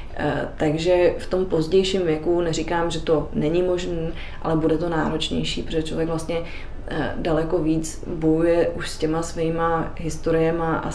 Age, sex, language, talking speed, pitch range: 20-39, female, Czech, 140 wpm, 160-220 Hz